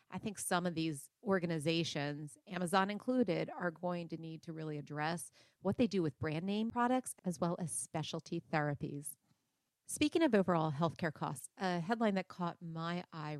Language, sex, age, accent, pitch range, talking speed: English, female, 40-59, American, 160-205 Hz, 170 wpm